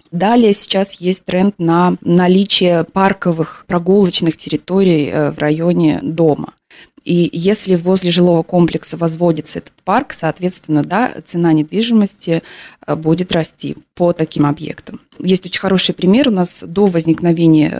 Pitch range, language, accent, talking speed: 165-195 Hz, Russian, native, 125 wpm